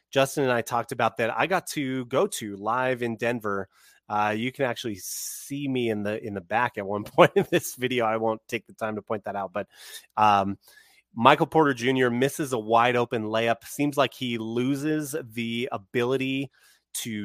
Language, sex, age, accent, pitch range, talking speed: English, male, 30-49, American, 105-130 Hz, 200 wpm